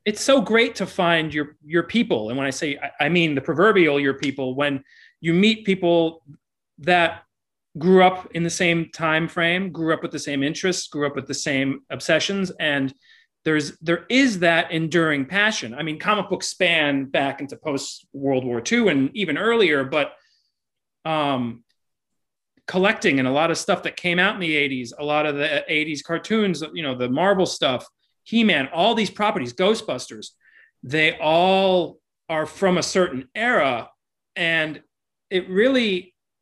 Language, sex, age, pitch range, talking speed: English, male, 30-49, 145-190 Hz, 170 wpm